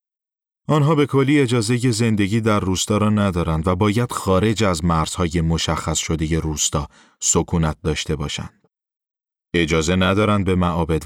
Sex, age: male, 30-49